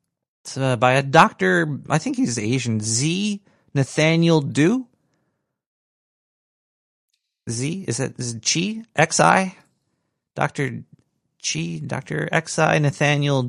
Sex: male